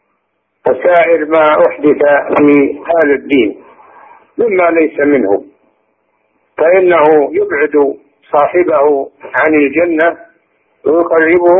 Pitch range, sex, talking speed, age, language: 145-170 Hz, male, 80 wpm, 50-69, Indonesian